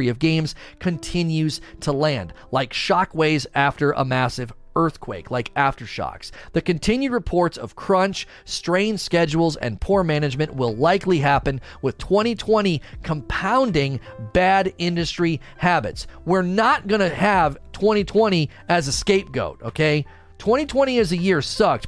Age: 40-59